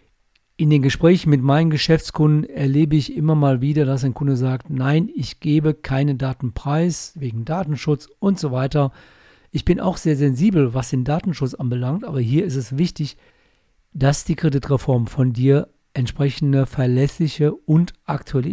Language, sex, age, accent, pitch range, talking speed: German, male, 50-69, German, 130-155 Hz, 155 wpm